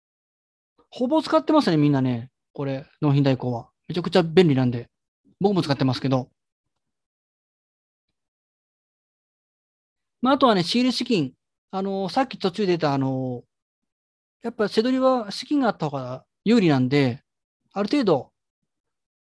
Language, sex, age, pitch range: Japanese, male, 30-49, 140-220 Hz